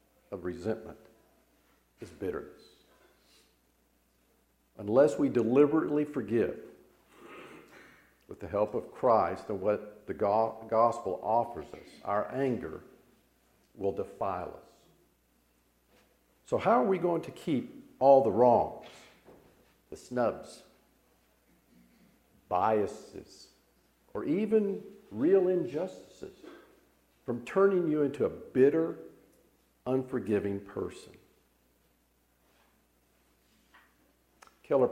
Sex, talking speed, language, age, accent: male, 85 wpm, English, 50-69, American